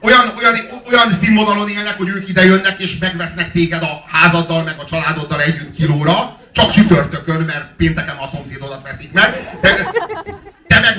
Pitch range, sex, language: 155-190 Hz, male, Hungarian